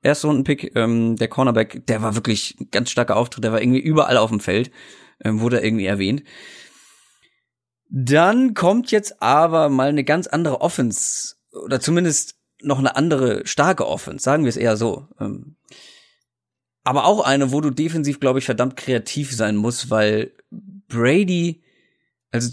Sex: male